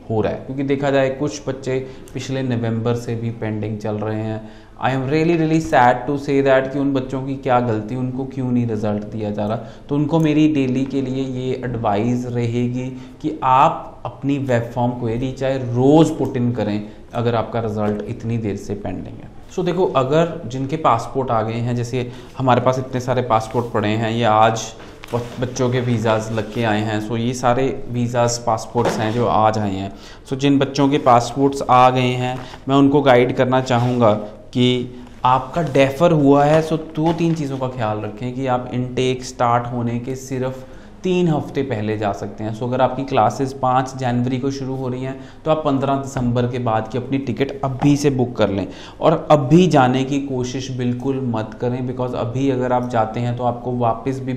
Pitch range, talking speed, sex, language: 115-140 Hz, 200 wpm, male, Punjabi